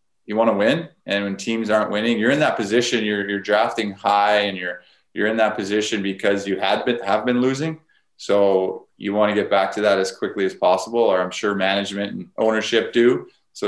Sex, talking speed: male, 220 wpm